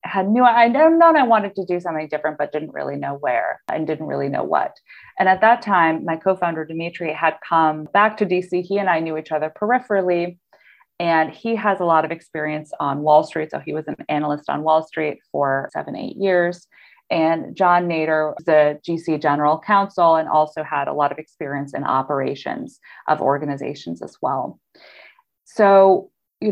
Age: 30-49